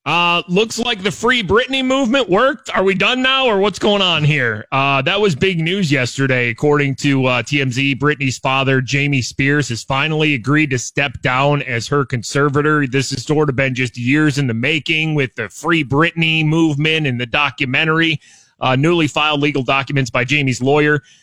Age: 30-49